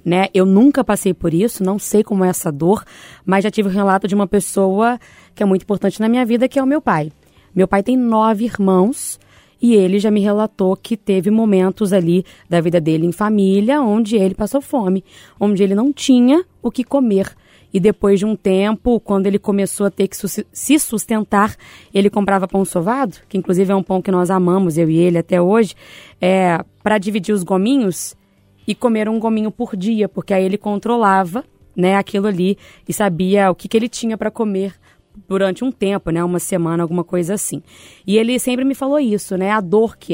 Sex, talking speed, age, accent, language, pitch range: female, 210 wpm, 20-39, Brazilian, Portuguese, 190-220 Hz